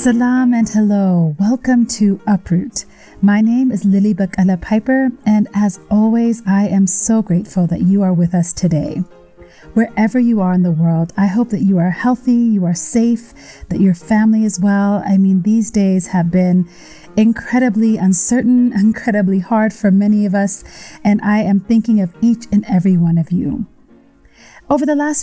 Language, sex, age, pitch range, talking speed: English, female, 30-49, 185-240 Hz, 175 wpm